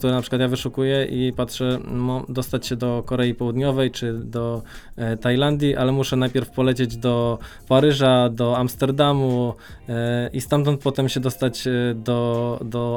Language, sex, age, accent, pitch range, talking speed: Polish, male, 20-39, native, 120-135 Hz, 155 wpm